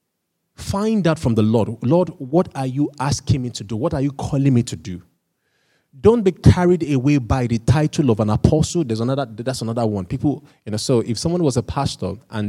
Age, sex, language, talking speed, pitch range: 20-39, male, English, 215 wpm, 105-140 Hz